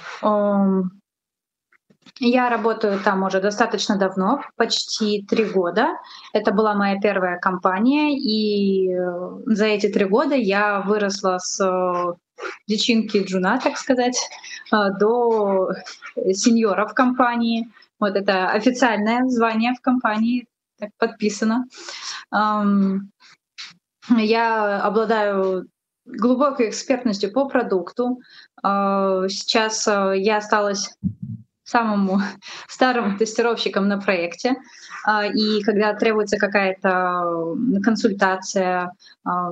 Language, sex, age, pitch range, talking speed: English, female, 20-39, 195-235 Hz, 85 wpm